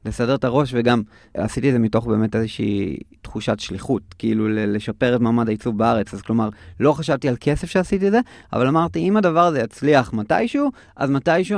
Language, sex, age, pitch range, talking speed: Hebrew, male, 30-49, 105-130 Hz, 185 wpm